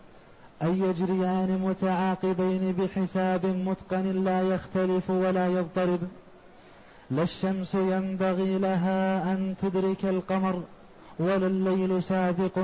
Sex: male